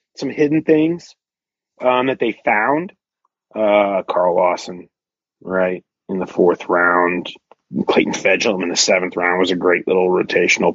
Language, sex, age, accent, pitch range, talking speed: English, male, 30-49, American, 90-125 Hz, 145 wpm